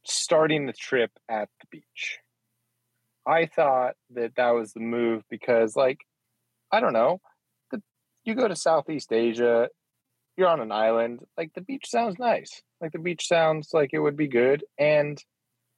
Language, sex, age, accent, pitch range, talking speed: English, male, 30-49, American, 110-135 Hz, 160 wpm